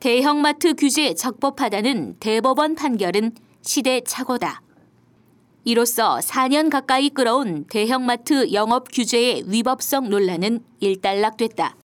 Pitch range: 220-280 Hz